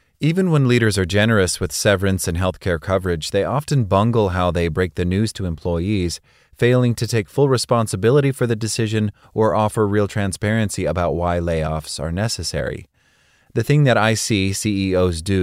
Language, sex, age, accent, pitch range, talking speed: English, male, 30-49, American, 85-110 Hz, 170 wpm